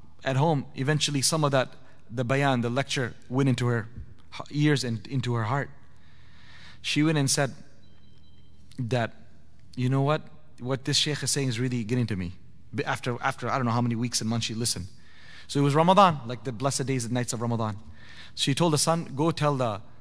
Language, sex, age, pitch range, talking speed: English, male, 30-49, 120-150 Hz, 200 wpm